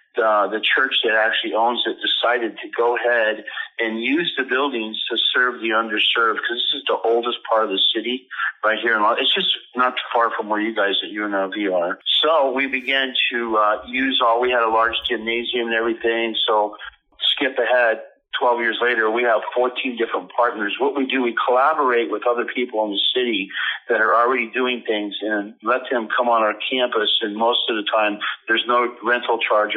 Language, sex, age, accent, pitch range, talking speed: English, male, 50-69, American, 110-125 Hz, 205 wpm